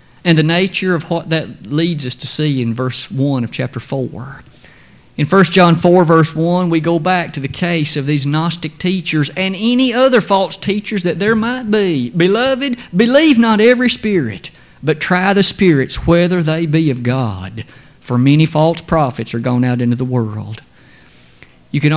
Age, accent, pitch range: 50-69, American, 135-190 Hz